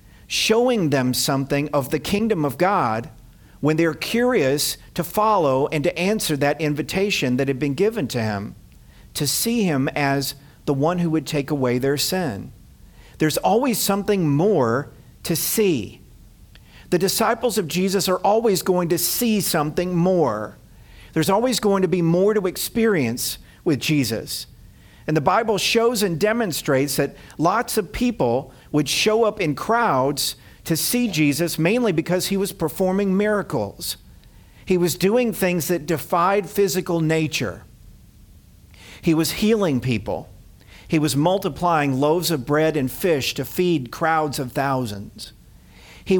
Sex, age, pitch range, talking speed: male, 50-69, 135-190 Hz, 145 wpm